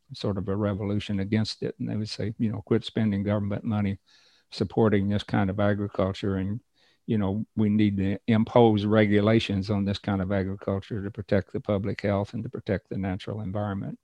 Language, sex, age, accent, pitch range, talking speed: English, male, 60-79, American, 105-125 Hz, 190 wpm